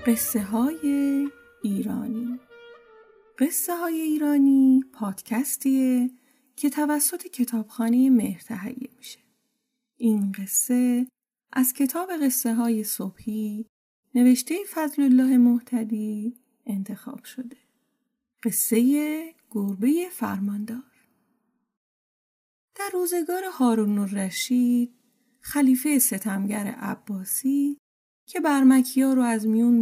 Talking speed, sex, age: 85 wpm, female, 30-49